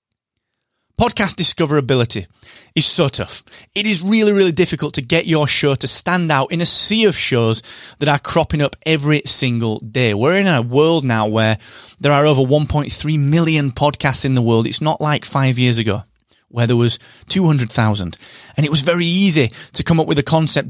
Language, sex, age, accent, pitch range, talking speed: English, male, 30-49, British, 120-160 Hz, 190 wpm